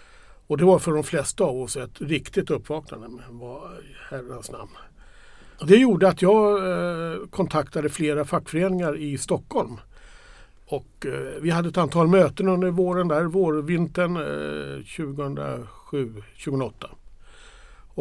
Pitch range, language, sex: 135-175 Hz, Swedish, male